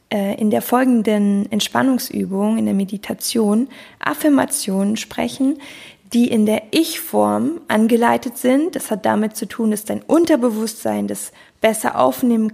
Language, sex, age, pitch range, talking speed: German, female, 20-39, 200-245 Hz, 125 wpm